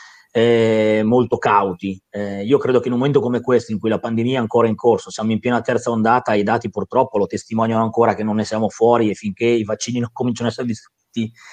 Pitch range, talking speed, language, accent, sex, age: 110-135 Hz, 230 wpm, Italian, native, male, 30-49